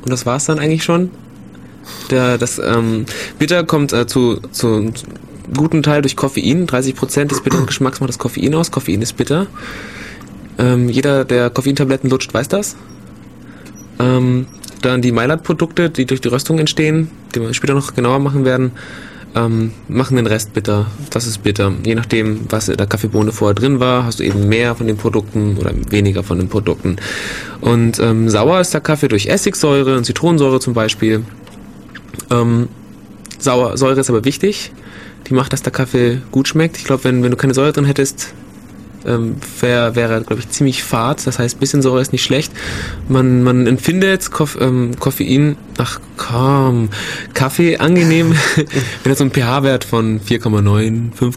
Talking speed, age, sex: 170 wpm, 20-39, male